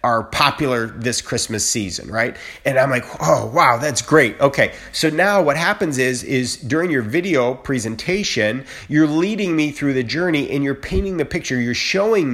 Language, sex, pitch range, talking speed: English, male, 120-155 Hz, 180 wpm